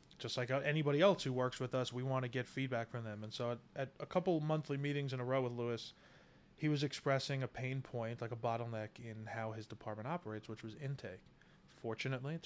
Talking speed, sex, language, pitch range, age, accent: 225 wpm, male, English, 120-140 Hz, 20-39, American